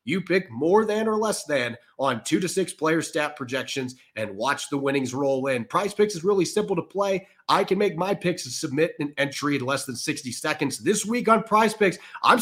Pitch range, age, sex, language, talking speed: 135-180 Hz, 30-49, male, English, 225 wpm